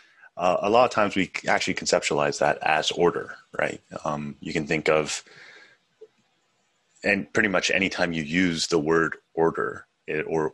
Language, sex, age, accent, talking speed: English, male, 30-49, American, 155 wpm